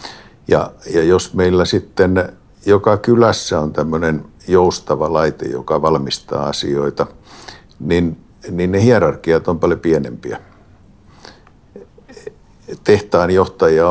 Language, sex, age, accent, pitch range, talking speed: Finnish, male, 60-79, native, 75-90 Hz, 95 wpm